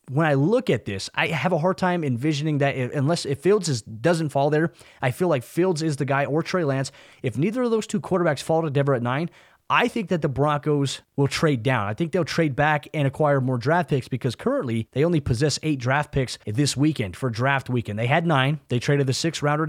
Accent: American